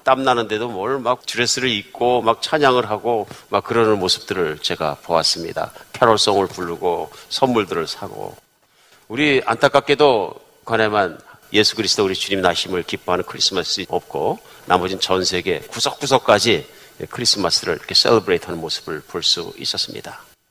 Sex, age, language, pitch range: male, 50-69, Korean, 95-145 Hz